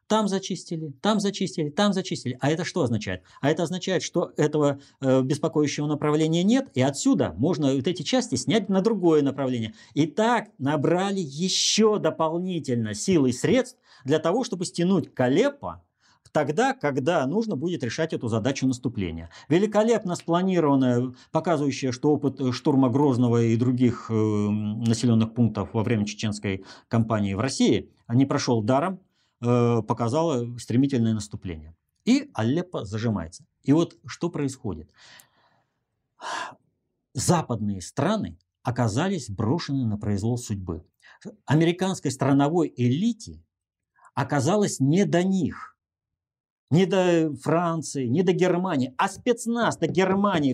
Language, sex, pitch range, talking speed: Russian, male, 120-185 Hz, 125 wpm